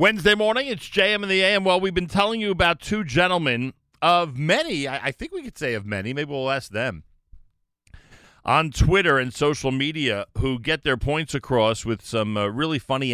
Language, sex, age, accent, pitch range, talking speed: English, male, 40-59, American, 85-120 Hz, 195 wpm